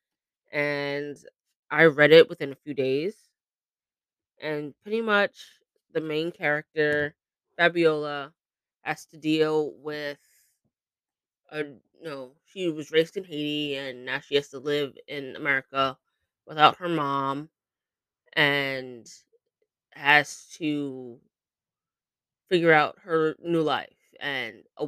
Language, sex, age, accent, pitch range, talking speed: English, female, 20-39, American, 130-155 Hz, 120 wpm